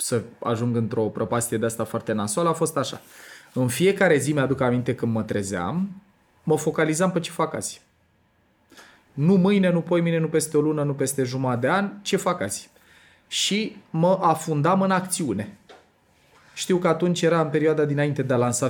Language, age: Romanian, 20-39